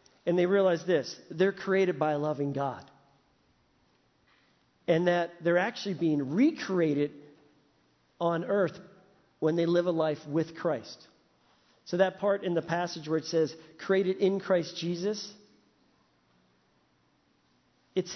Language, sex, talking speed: English, male, 130 wpm